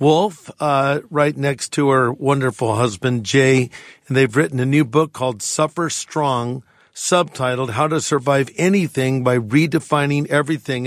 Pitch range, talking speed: 130-155 Hz, 145 wpm